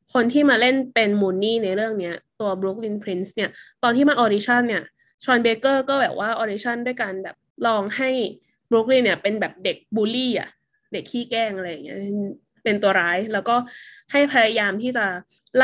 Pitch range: 200-255 Hz